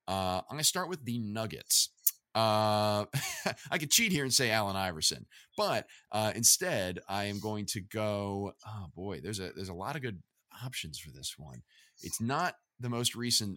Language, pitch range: English, 95-130 Hz